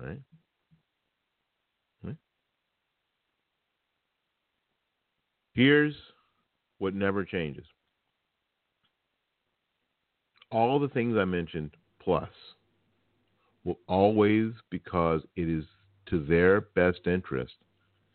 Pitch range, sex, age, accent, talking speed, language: 85-95 Hz, male, 50-69, American, 70 wpm, English